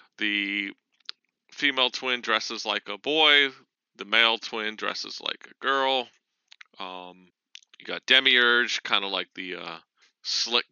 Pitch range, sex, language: 100-140 Hz, male, English